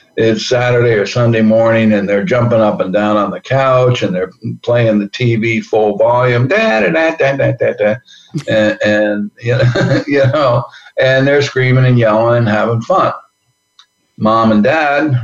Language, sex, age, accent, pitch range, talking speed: English, male, 60-79, American, 105-120 Hz, 175 wpm